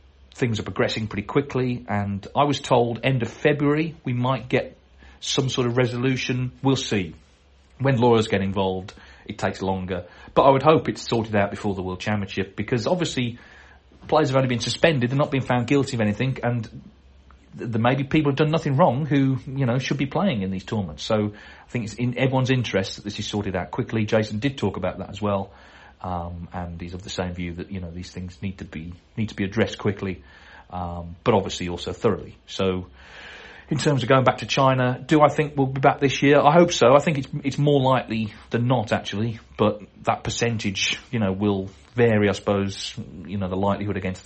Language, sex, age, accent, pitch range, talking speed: English, male, 40-59, British, 95-130 Hz, 215 wpm